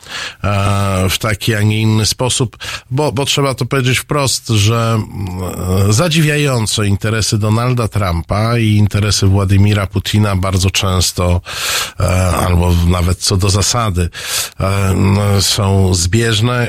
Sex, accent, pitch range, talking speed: male, native, 95-110 Hz, 110 wpm